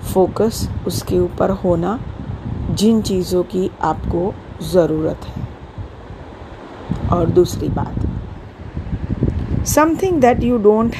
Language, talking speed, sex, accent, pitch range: Hindi, 95 wpm, female, native, 105-180 Hz